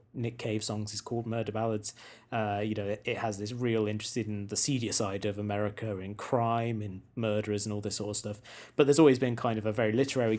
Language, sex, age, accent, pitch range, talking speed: English, male, 20-39, British, 105-125 Hz, 235 wpm